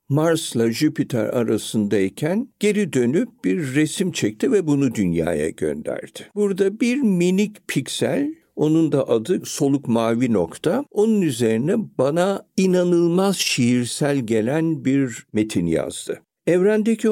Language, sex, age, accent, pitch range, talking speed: Turkish, male, 60-79, native, 110-170 Hz, 110 wpm